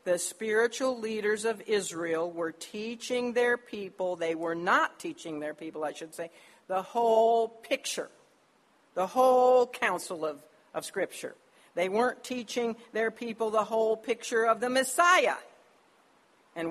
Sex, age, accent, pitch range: female, 60-79, American, 190-310 Hz